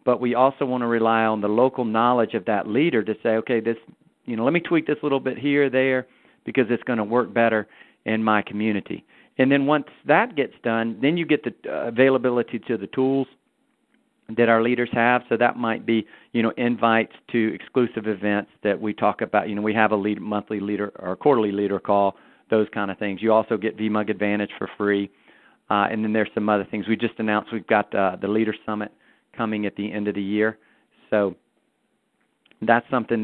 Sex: male